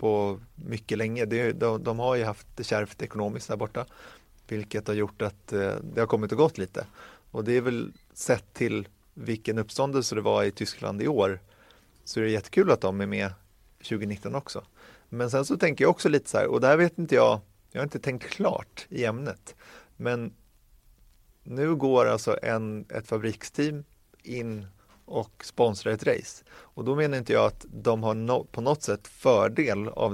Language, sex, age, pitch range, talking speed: Swedish, male, 30-49, 100-120 Hz, 190 wpm